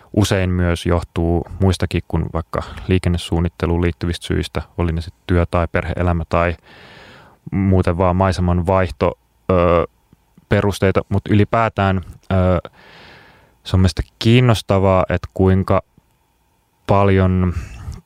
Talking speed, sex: 105 wpm, male